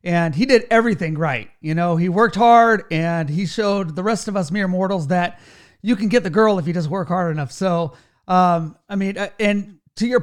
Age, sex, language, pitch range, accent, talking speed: 30-49, male, English, 170-215 Hz, American, 225 wpm